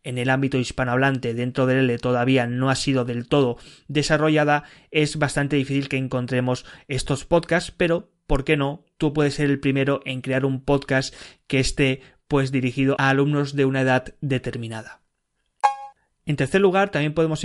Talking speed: 170 wpm